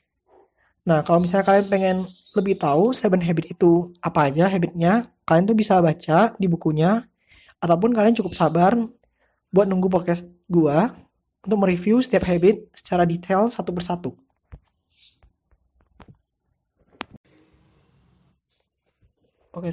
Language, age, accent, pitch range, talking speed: Indonesian, 20-39, native, 175-225 Hz, 110 wpm